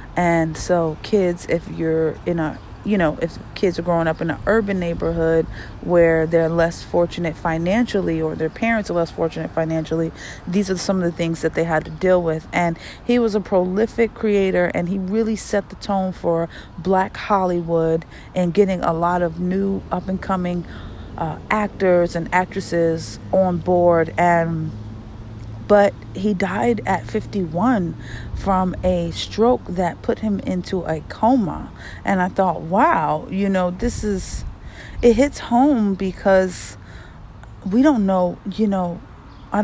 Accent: American